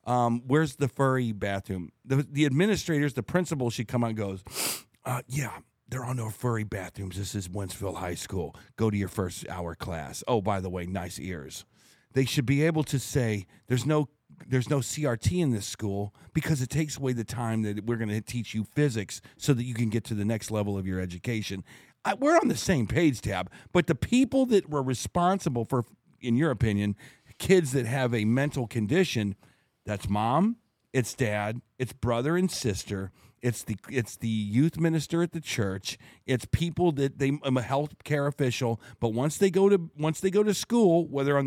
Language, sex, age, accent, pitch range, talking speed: English, male, 50-69, American, 110-150 Hz, 195 wpm